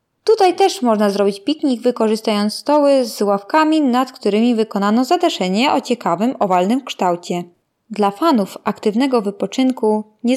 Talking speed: 125 wpm